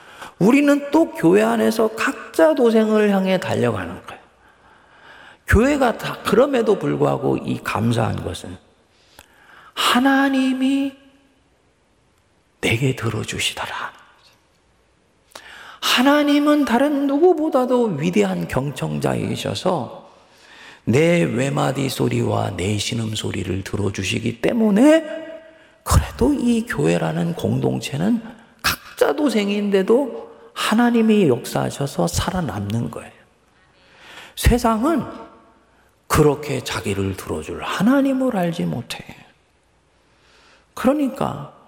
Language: Korean